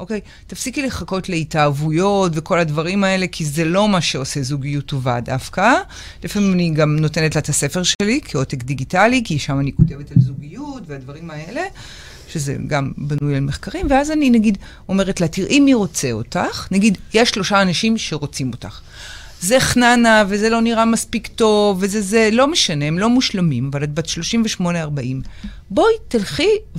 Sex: female